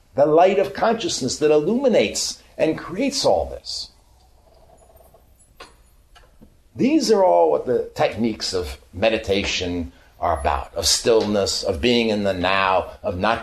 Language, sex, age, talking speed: English, male, 60-79, 130 wpm